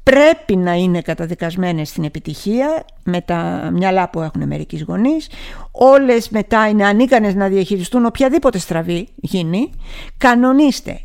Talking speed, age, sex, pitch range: 125 wpm, 50-69, female, 190-265 Hz